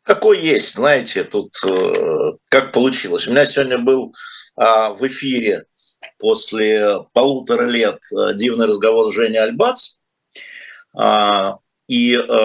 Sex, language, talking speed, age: male, Russian, 100 wpm, 50-69